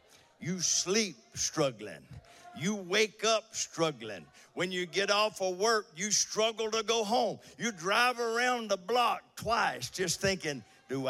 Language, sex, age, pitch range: English, male, 50-69, 160-225 Hz